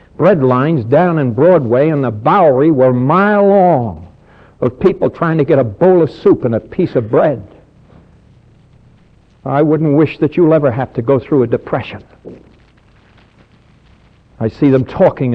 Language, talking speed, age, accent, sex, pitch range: English, 165 wpm, 60-79, American, male, 125-175 Hz